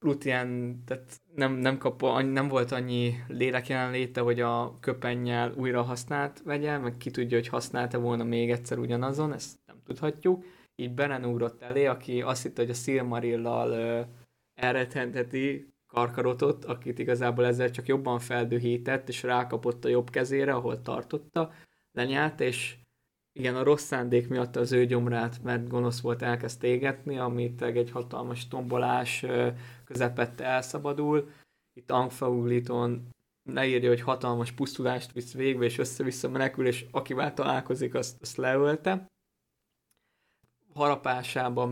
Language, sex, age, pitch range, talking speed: Hungarian, male, 20-39, 120-135 Hz, 130 wpm